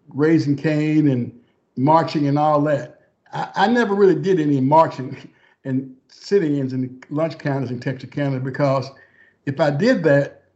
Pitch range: 140-180 Hz